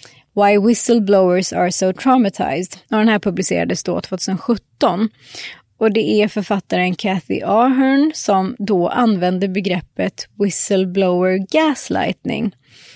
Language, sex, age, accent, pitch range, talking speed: English, female, 20-39, Swedish, 185-235 Hz, 105 wpm